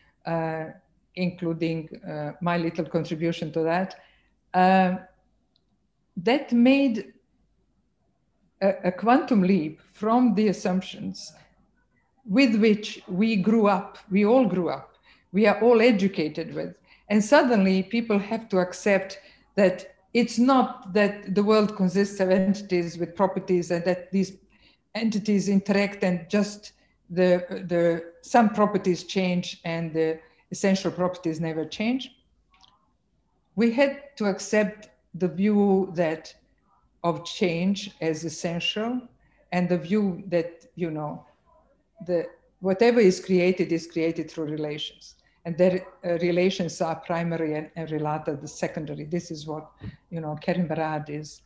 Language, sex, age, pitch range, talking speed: English, female, 50-69, 170-210 Hz, 130 wpm